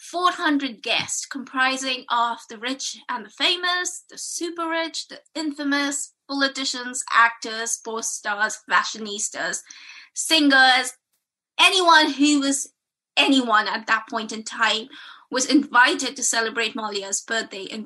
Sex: female